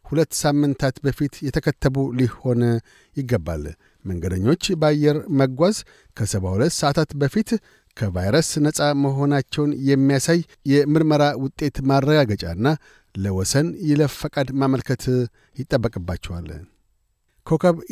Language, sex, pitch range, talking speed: Amharic, male, 125-150 Hz, 80 wpm